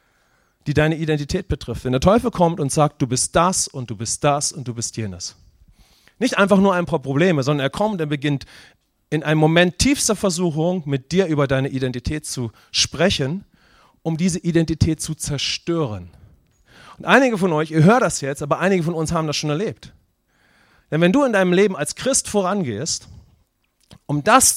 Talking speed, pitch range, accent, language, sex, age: 190 wpm, 150-220 Hz, German, English, male, 40-59